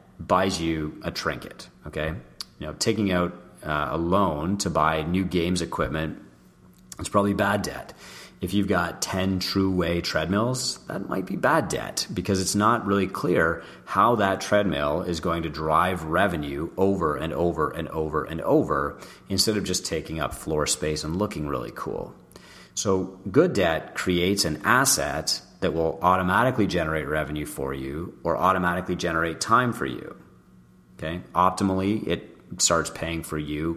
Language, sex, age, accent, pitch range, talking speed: English, male, 30-49, American, 75-100 Hz, 160 wpm